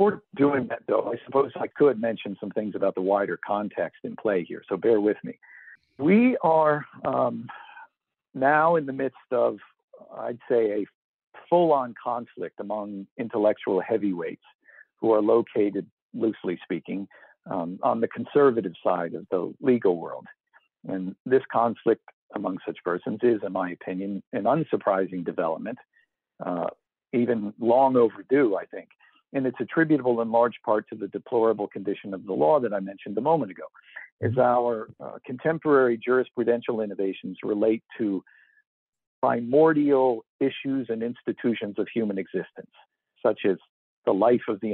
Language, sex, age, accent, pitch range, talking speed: English, male, 50-69, American, 105-140 Hz, 150 wpm